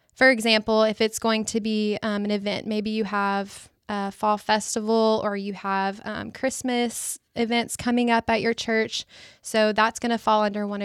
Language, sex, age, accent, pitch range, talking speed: English, female, 10-29, American, 210-235 Hz, 190 wpm